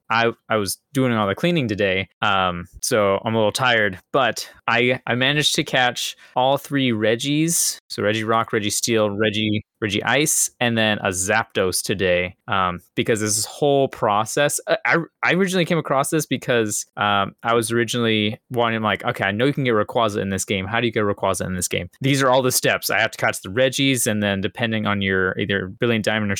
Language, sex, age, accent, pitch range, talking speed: English, male, 20-39, American, 100-130 Hz, 210 wpm